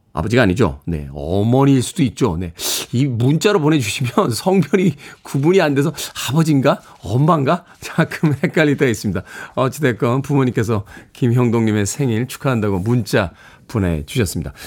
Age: 40-59